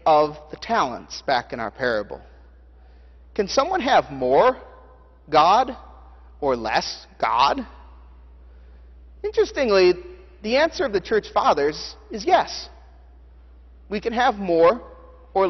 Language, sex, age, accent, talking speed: English, male, 40-59, American, 110 wpm